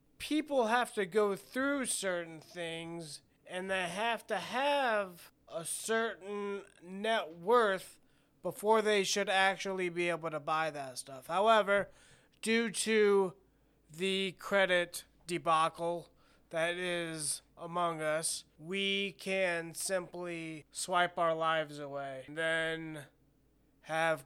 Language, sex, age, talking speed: English, male, 20-39, 115 wpm